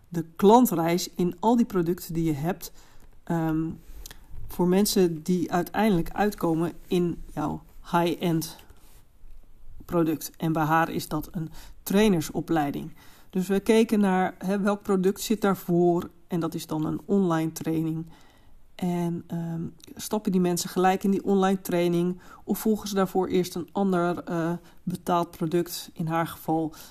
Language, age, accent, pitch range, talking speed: Dutch, 40-59, Dutch, 165-195 Hz, 140 wpm